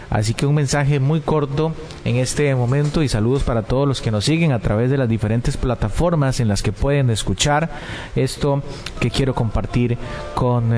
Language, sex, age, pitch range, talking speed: Spanish, male, 30-49, 105-140 Hz, 185 wpm